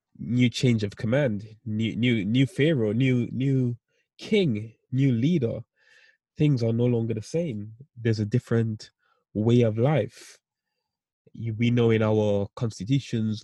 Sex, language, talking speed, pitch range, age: male, English, 135 wpm, 110-145 Hz, 20-39